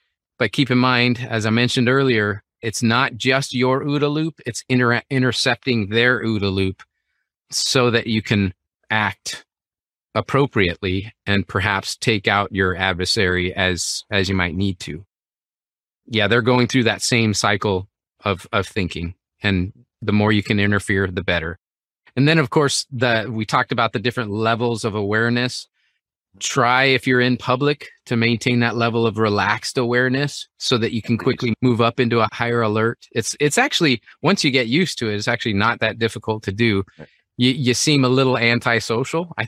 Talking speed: 175 wpm